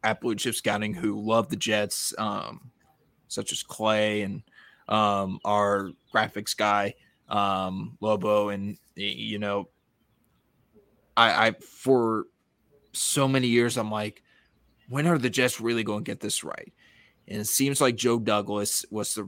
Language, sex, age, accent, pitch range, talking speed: English, male, 20-39, American, 105-120 Hz, 150 wpm